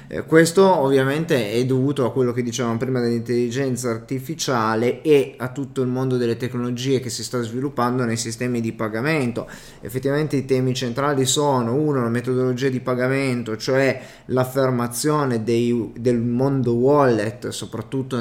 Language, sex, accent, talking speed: Italian, male, native, 140 wpm